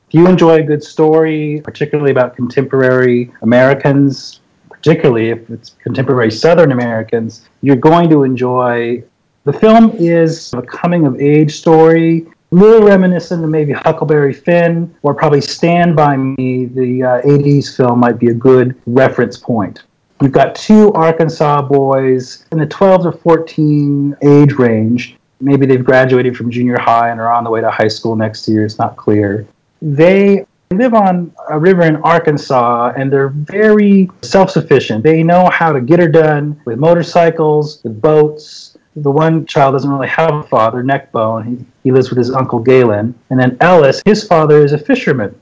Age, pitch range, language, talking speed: 30-49, 125-165 Hz, English, 165 wpm